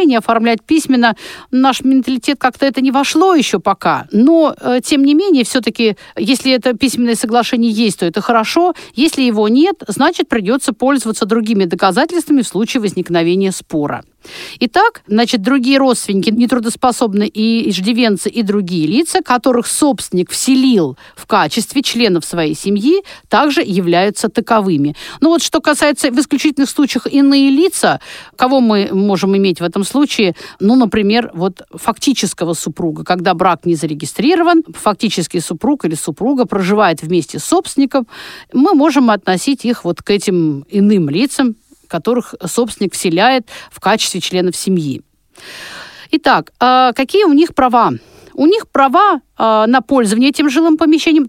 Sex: female